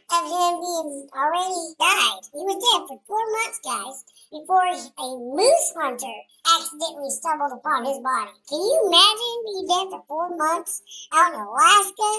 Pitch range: 275-360 Hz